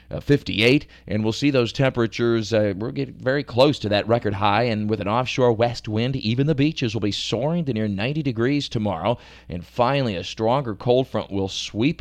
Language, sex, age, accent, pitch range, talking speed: English, male, 40-59, American, 105-125 Hz, 205 wpm